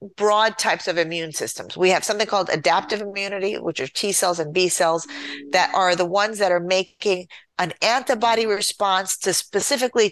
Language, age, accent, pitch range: English, 40-59, American, 165-210 Hz